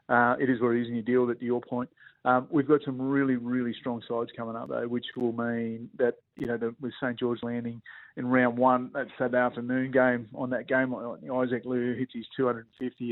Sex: male